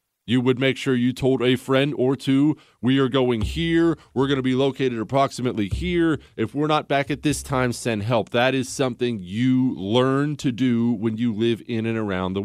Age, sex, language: 40-59, male, English